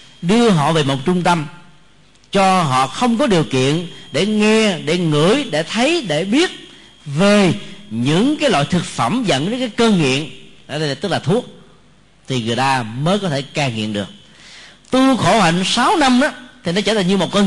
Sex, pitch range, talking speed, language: male, 130-195 Hz, 200 wpm, Vietnamese